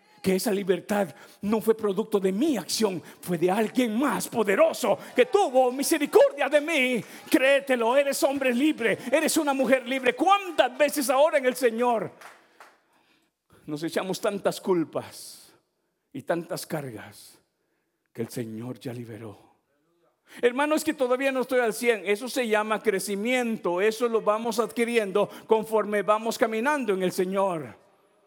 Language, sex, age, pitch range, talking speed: Spanish, male, 50-69, 190-260 Hz, 140 wpm